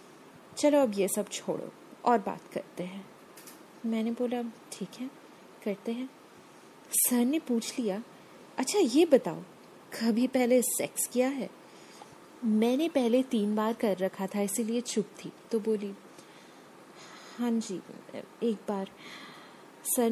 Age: 30-49